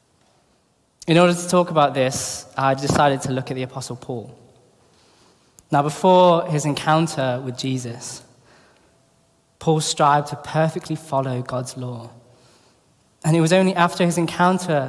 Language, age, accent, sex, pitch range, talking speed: English, 20-39, British, male, 135-160 Hz, 135 wpm